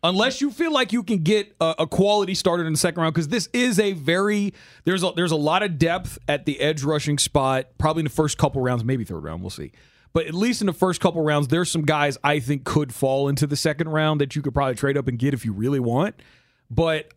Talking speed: 260 wpm